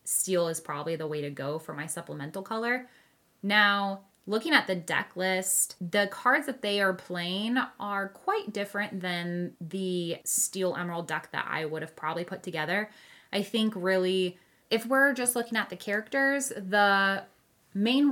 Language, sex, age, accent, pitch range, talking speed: English, female, 10-29, American, 175-205 Hz, 165 wpm